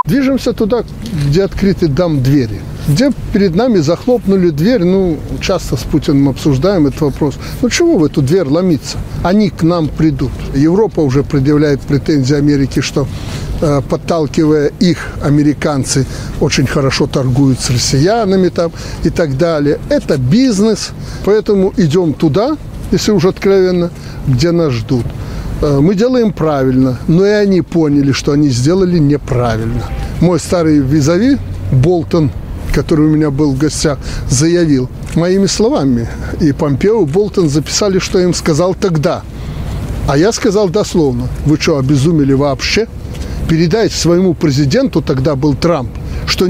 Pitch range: 140-190 Hz